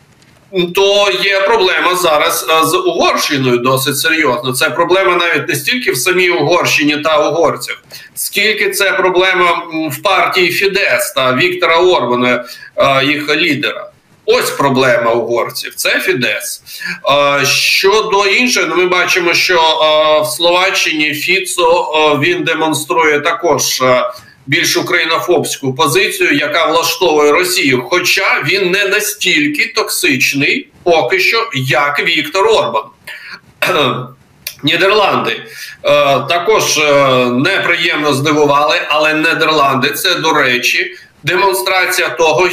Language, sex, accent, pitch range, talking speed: Ukrainian, male, native, 150-190 Hz, 105 wpm